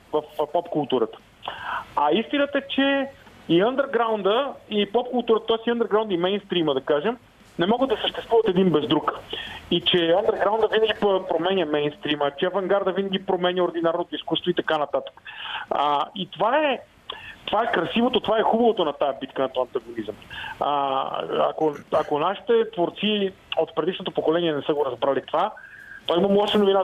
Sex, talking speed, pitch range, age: male, 165 wpm, 155-215 Hz, 40-59